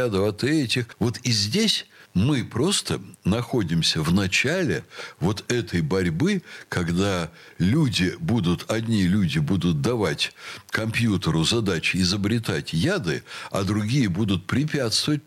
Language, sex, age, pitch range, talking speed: Russian, male, 60-79, 100-140 Hz, 110 wpm